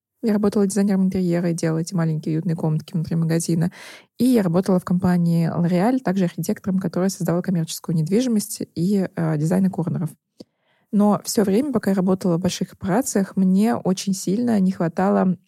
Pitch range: 170-195 Hz